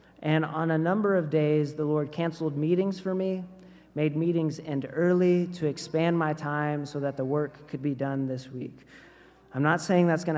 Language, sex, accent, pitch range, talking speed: English, male, American, 145-175 Hz, 195 wpm